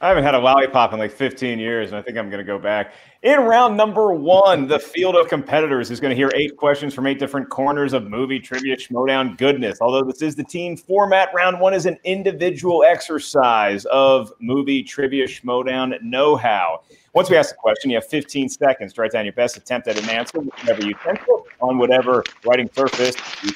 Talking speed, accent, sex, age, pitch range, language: 210 wpm, American, male, 30-49, 120-145 Hz, English